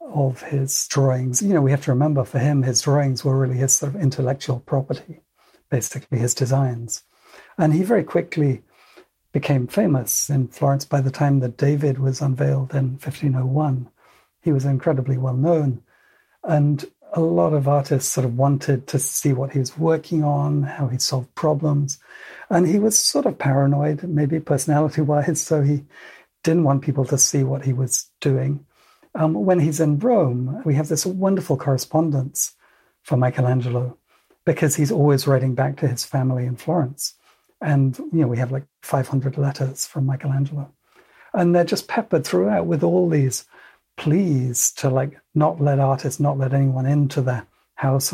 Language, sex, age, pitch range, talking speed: English, male, 60-79, 135-150 Hz, 165 wpm